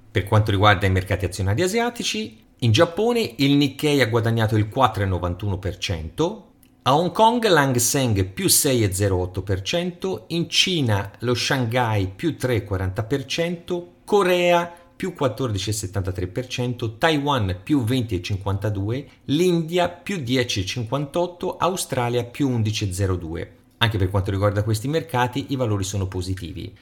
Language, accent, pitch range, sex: Italian, native, 100-140 Hz, male